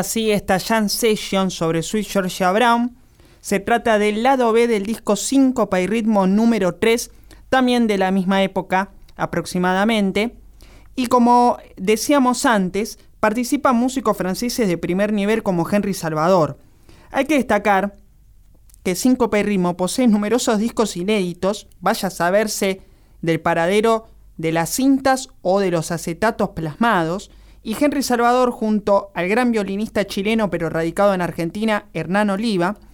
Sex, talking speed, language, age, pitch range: male, 140 wpm, Spanish, 20-39, 180-235 Hz